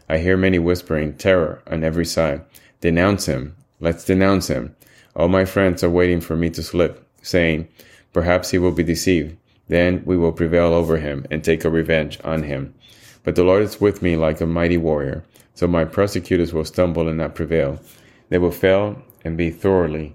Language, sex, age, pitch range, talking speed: English, male, 30-49, 80-90 Hz, 190 wpm